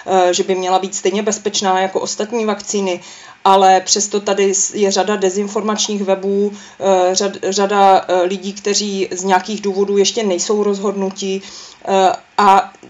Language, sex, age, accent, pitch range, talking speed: Czech, female, 30-49, native, 190-210 Hz, 125 wpm